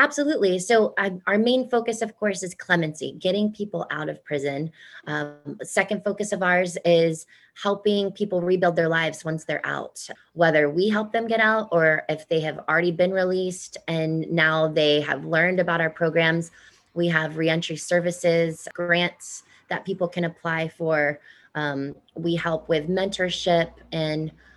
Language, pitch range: English, 160-195 Hz